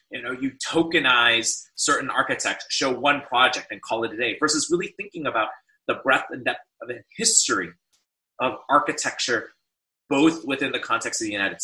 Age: 30-49